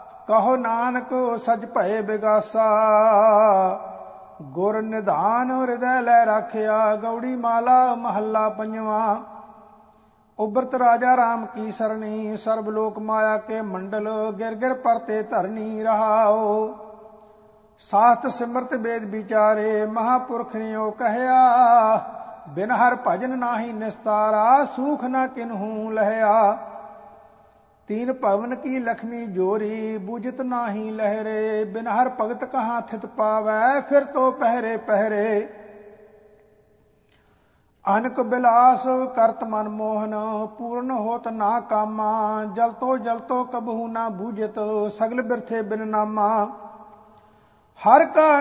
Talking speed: 105 wpm